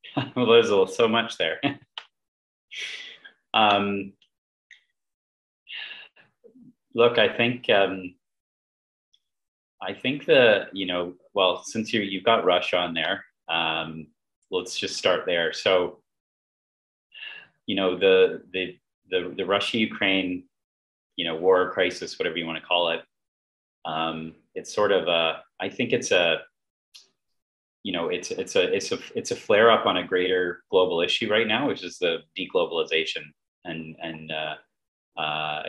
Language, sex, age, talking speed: English, male, 30-49, 140 wpm